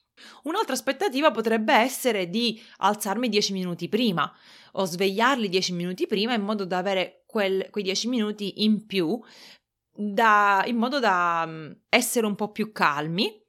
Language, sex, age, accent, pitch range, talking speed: Italian, female, 20-39, native, 185-230 Hz, 140 wpm